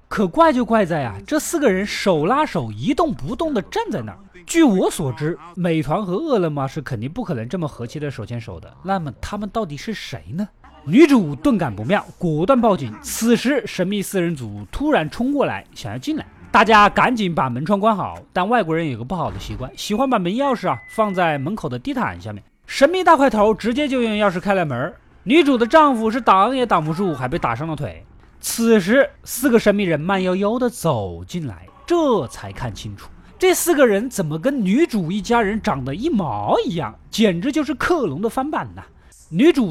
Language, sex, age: Chinese, male, 20-39